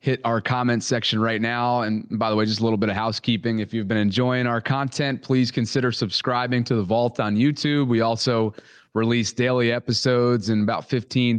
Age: 30-49